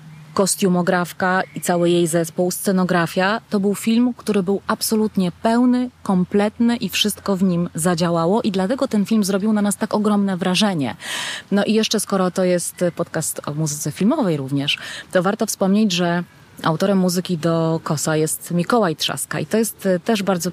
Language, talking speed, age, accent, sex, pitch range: Polish, 165 wpm, 20-39, native, female, 175-215 Hz